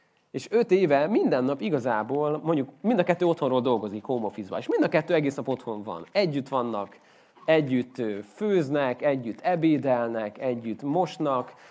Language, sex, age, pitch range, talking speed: Hungarian, male, 30-49, 120-165 Hz, 150 wpm